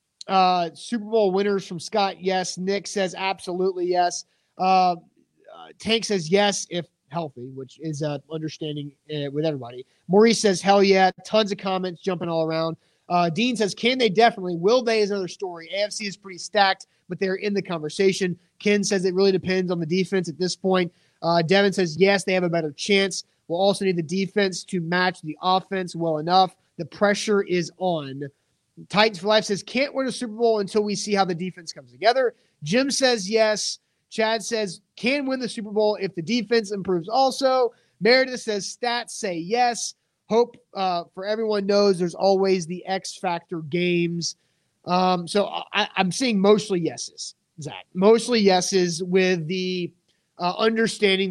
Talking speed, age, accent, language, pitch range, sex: 175 wpm, 30-49, American, English, 175-205 Hz, male